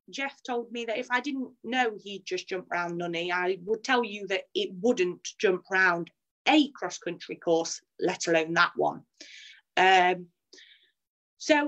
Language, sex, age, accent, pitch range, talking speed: English, female, 30-49, British, 185-255 Hz, 165 wpm